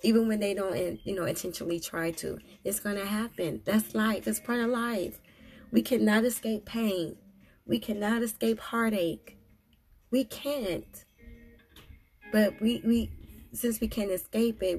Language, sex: English, female